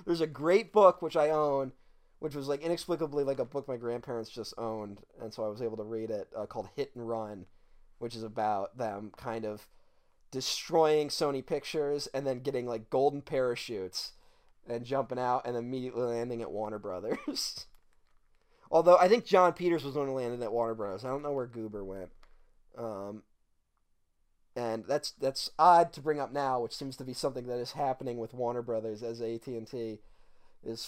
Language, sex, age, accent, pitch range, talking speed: English, male, 20-39, American, 120-155 Hz, 185 wpm